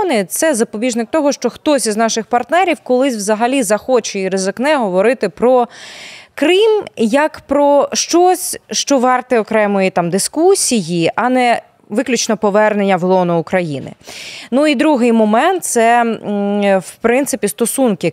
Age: 20-39